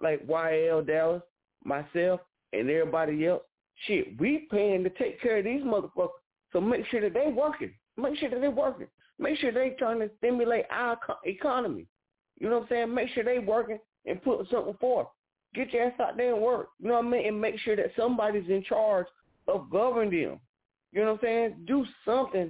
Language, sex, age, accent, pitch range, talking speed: English, male, 30-49, American, 165-240 Hz, 205 wpm